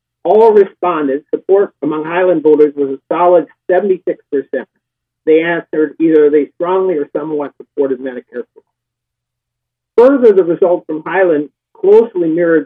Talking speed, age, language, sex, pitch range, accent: 125 wpm, 50-69, English, male, 140-180 Hz, American